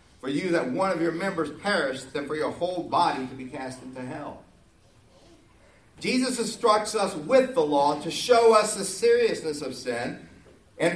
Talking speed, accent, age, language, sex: 175 wpm, American, 50-69, English, male